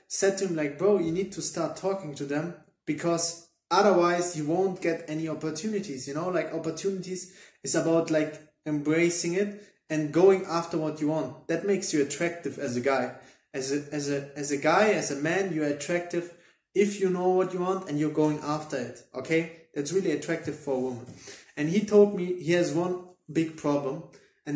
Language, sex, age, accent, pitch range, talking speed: English, male, 20-39, German, 150-180 Hz, 200 wpm